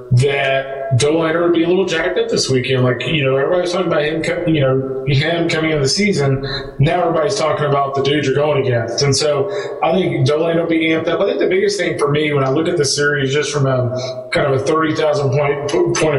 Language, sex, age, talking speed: English, male, 20-39, 235 wpm